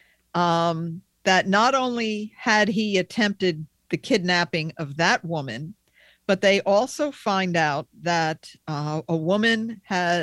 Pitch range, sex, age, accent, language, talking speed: 160-205 Hz, female, 50-69, American, English, 130 wpm